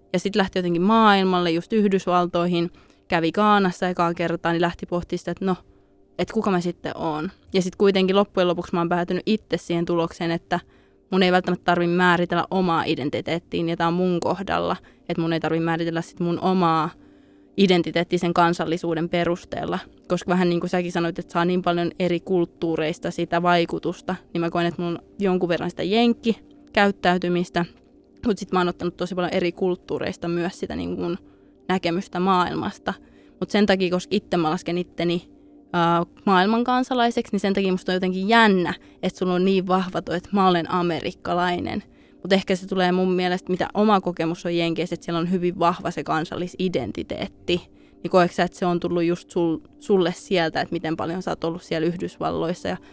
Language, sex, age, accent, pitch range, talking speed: Finnish, female, 20-39, native, 170-185 Hz, 180 wpm